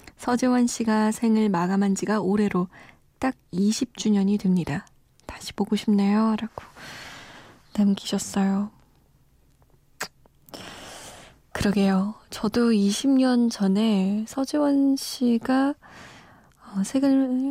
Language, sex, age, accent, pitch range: Korean, female, 20-39, native, 195-235 Hz